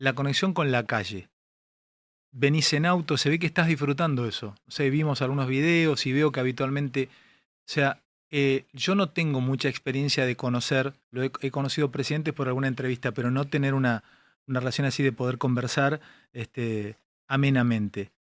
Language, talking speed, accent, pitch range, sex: Spanish, 175 wpm, Argentinian, 130-155 Hz, male